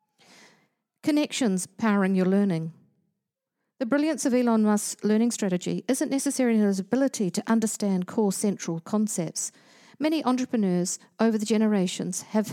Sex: female